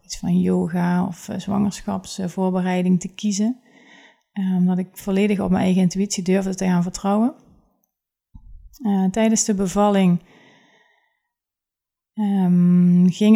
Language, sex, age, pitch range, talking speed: Dutch, female, 30-49, 185-205 Hz, 95 wpm